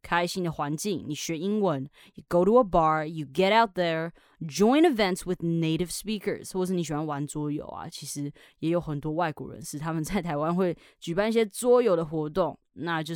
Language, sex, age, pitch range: Chinese, female, 20-39, 155-195 Hz